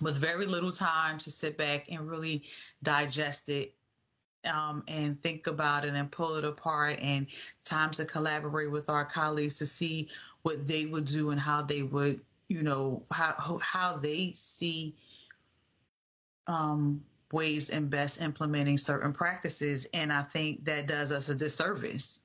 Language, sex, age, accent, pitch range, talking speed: English, female, 30-49, American, 145-165 Hz, 155 wpm